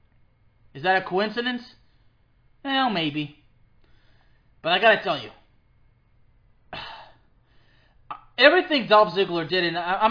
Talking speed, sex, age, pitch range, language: 105 wpm, male, 20-39, 145-205 Hz, English